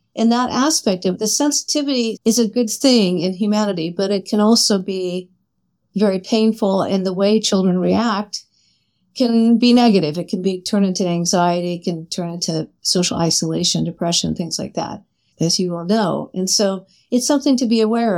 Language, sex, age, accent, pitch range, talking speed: English, female, 50-69, American, 180-220 Hz, 175 wpm